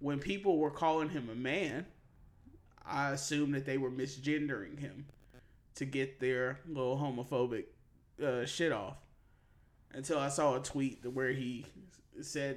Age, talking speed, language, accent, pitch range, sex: 20-39, 145 wpm, English, American, 130-165 Hz, male